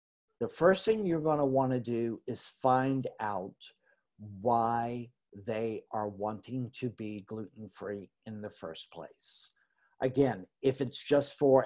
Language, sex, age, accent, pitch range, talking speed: English, male, 50-69, American, 120-145 Hz, 145 wpm